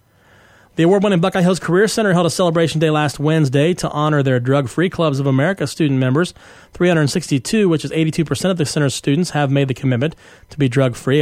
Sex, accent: male, American